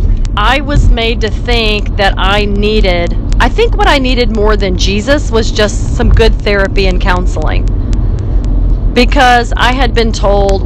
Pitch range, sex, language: 95-115 Hz, female, English